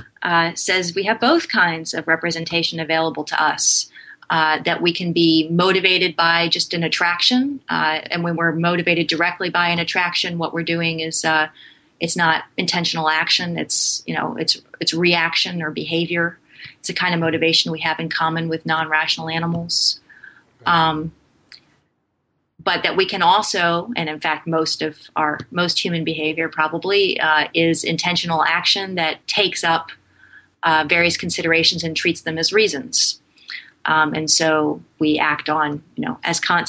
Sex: female